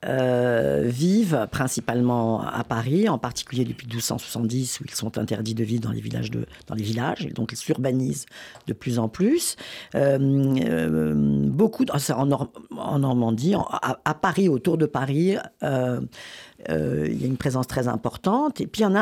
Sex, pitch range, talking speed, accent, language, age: female, 130-195 Hz, 185 wpm, French, French, 50-69